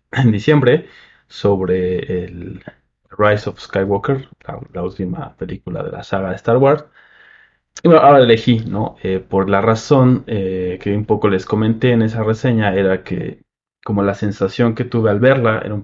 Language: Spanish